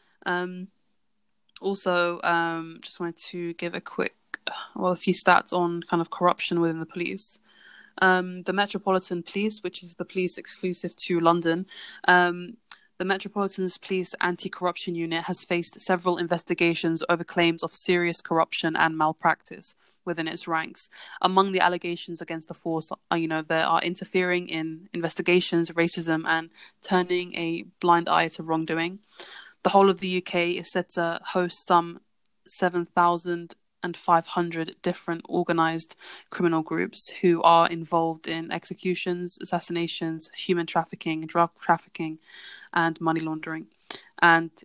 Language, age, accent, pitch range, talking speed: English, 20-39, British, 165-180 Hz, 135 wpm